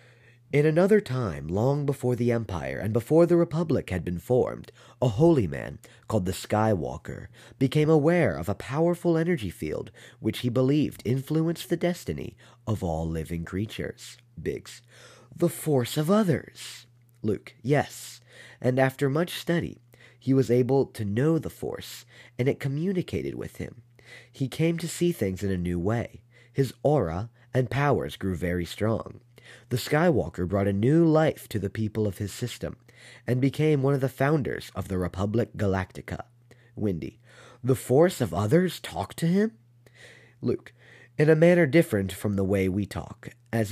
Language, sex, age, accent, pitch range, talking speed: English, male, 30-49, American, 105-140 Hz, 160 wpm